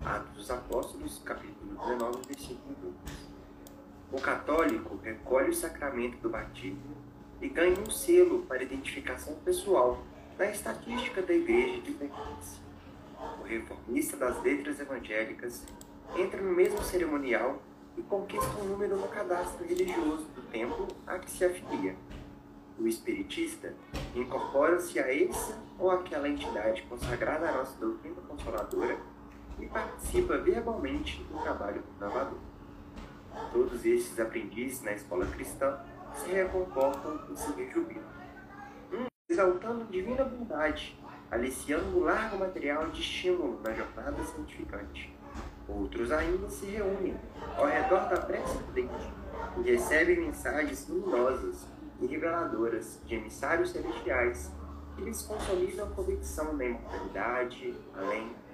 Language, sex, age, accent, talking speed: Portuguese, male, 30-49, Brazilian, 125 wpm